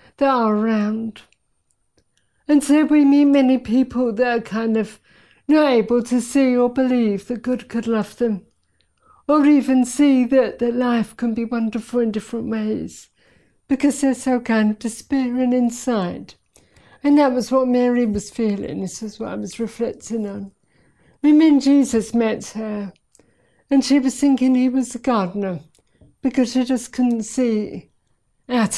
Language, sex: English, female